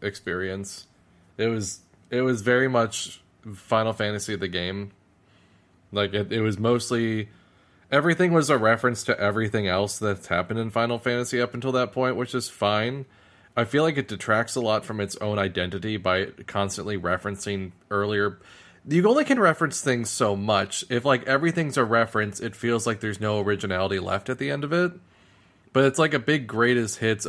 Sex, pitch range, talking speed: male, 100-125 Hz, 180 wpm